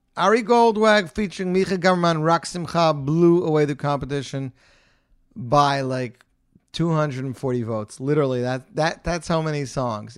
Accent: American